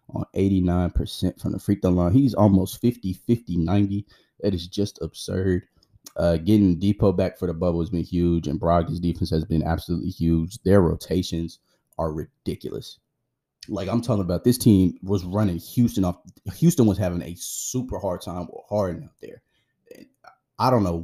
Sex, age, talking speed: male, 20-39, 165 wpm